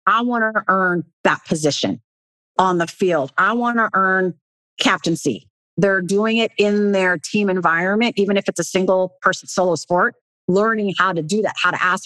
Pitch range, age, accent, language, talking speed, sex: 160-190 Hz, 40-59, American, English, 185 wpm, female